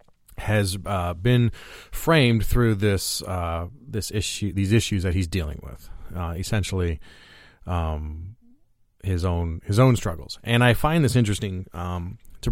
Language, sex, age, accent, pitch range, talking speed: English, male, 30-49, American, 85-105 Hz, 145 wpm